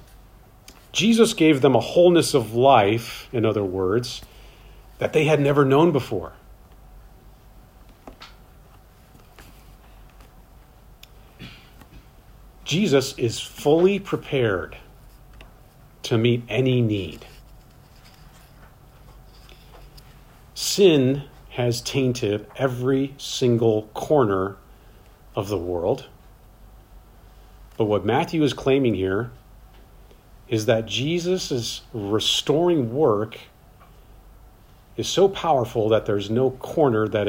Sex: male